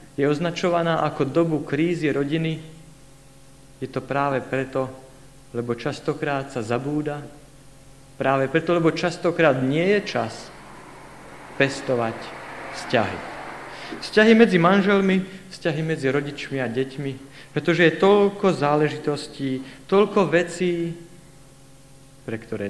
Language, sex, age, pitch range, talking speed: Slovak, male, 50-69, 130-155 Hz, 105 wpm